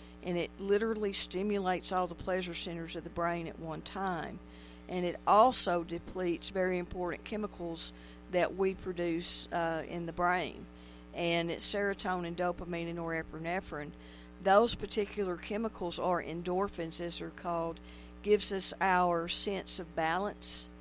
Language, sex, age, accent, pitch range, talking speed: English, female, 50-69, American, 150-180 Hz, 140 wpm